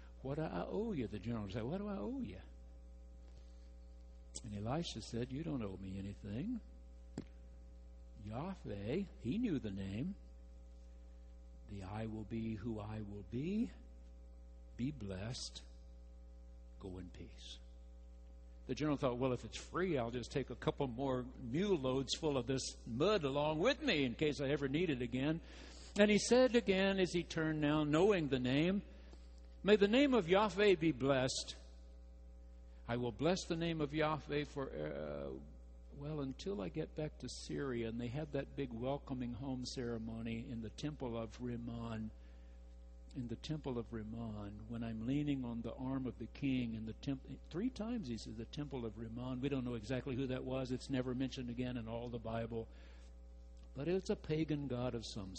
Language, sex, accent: English, male, American